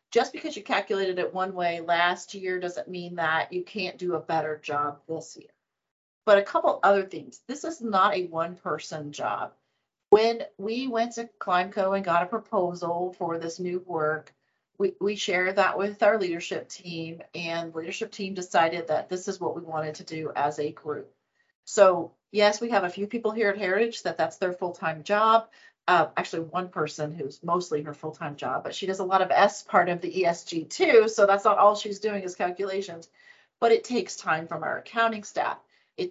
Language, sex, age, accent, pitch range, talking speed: English, female, 40-59, American, 170-215 Hz, 205 wpm